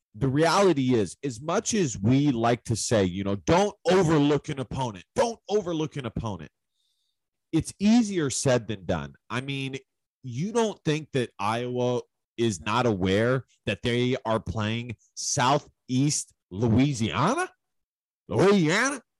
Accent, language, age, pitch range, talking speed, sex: American, English, 30-49, 110-150 Hz, 130 wpm, male